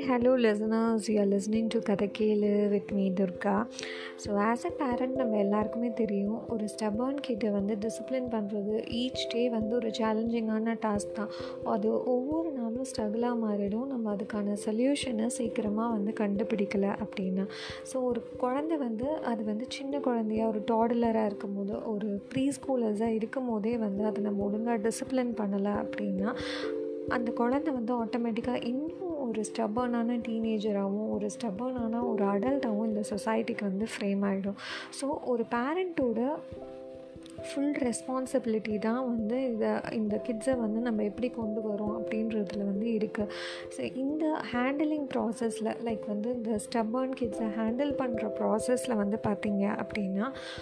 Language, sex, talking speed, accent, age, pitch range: Tamil, female, 135 wpm, native, 30-49, 210-250 Hz